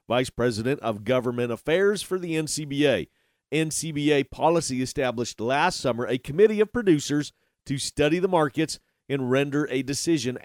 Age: 40-59